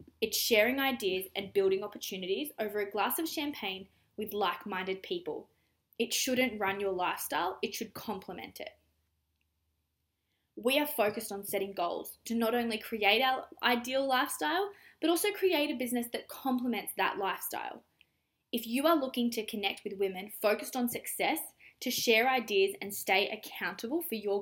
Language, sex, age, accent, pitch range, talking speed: English, female, 20-39, Australian, 200-250 Hz, 155 wpm